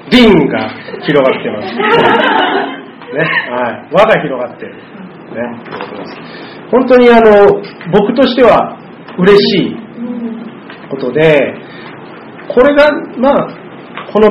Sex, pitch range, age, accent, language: male, 150-225 Hz, 40-59, native, Japanese